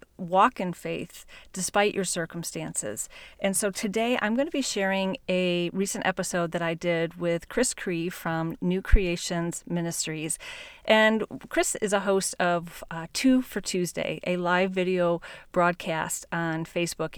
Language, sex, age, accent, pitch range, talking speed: English, female, 40-59, American, 175-210 Hz, 150 wpm